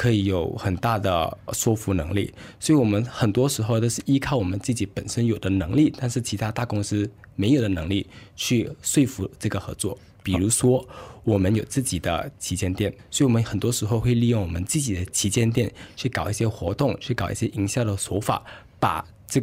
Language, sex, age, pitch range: Chinese, male, 20-39, 95-120 Hz